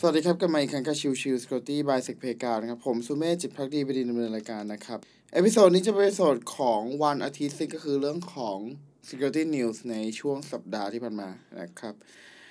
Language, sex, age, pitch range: Thai, male, 20-39, 130-165 Hz